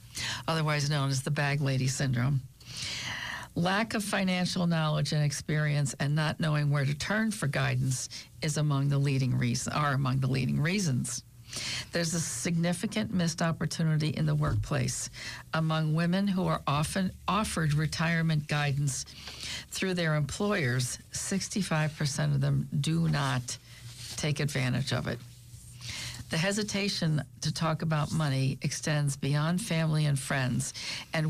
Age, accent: 60-79, American